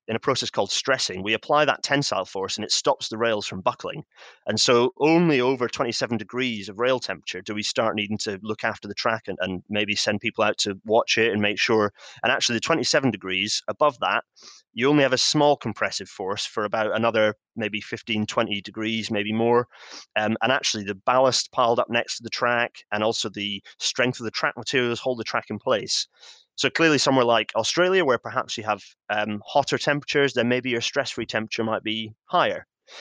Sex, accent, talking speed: male, British, 205 wpm